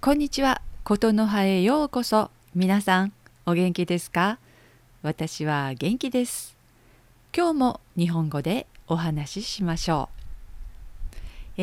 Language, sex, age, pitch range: Japanese, female, 50-69, 125-195 Hz